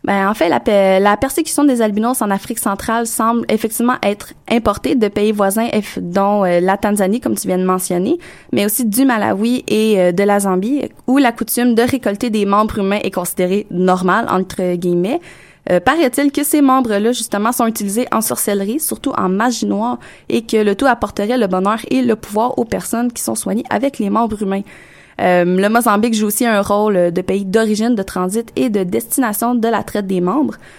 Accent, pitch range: Canadian, 200-240 Hz